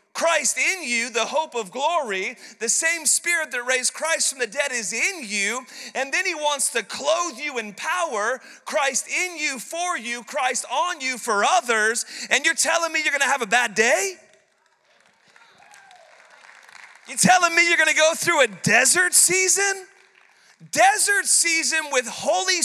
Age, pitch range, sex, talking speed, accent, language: 40-59, 235-330 Hz, male, 170 wpm, American, English